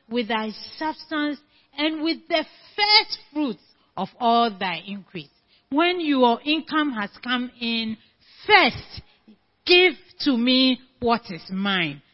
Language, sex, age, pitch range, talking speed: English, female, 40-59, 195-295 Hz, 125 wpm